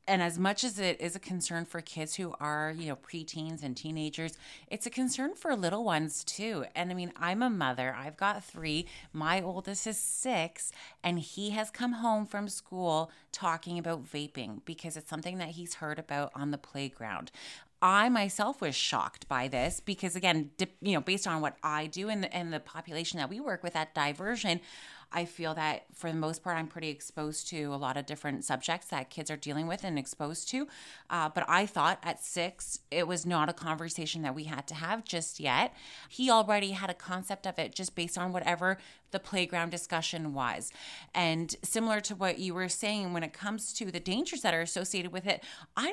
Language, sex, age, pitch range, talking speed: English, female, 30-49, 155-195 Hz, 205 wpm